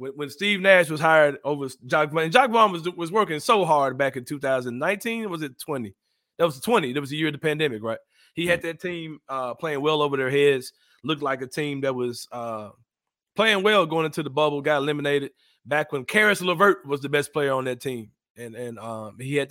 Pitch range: 125-160 Hz